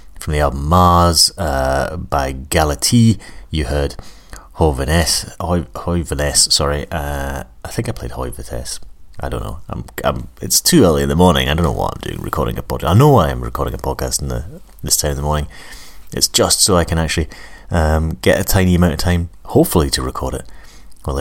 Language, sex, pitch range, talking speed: English, male, 65-85 Hz, 200 wpm